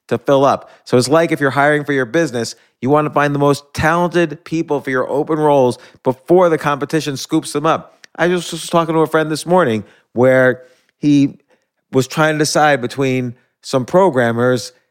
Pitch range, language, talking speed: 125-155 Hz, English, 195 wpm